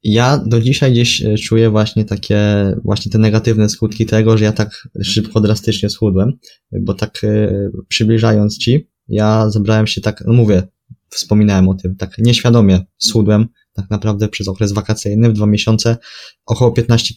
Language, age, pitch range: Polish, 20-39, 100-115 Hz